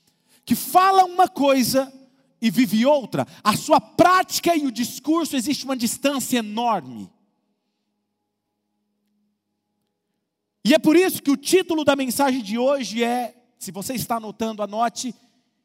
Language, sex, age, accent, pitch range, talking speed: Portuguese, male, 40-59, Brazilian, 200-285 Hz, 130 wpm